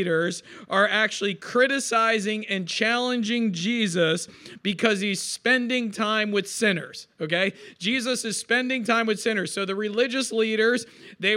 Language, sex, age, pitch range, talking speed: English, male, 40-59, 195-225 Hz, 125 wpm